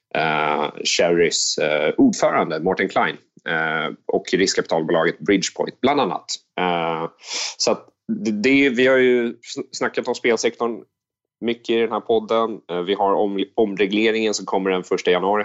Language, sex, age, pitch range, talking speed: Swedish, male, 30-49, 90-115 Hz, 150 wpm